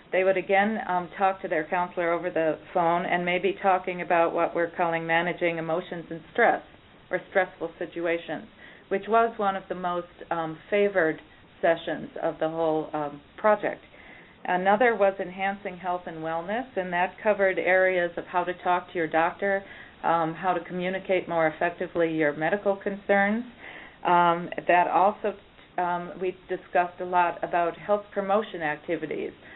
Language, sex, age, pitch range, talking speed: English, female, 40-59, 165-195 Hz, 155 wpm